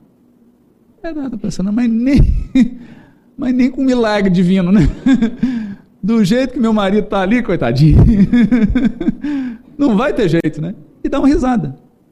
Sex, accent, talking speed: male, Brazilian, 140 wpm